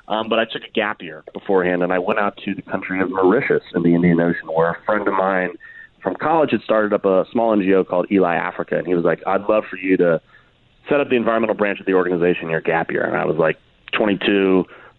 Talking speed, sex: 250 wpm, male